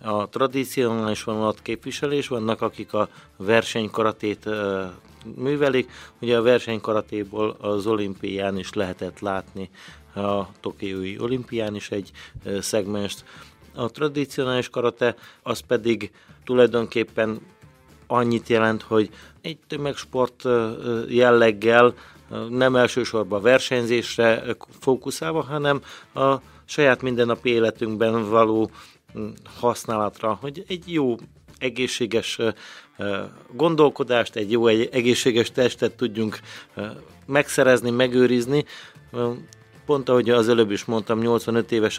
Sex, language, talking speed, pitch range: male, Hungarian, 100 wpm, 105-125 Hz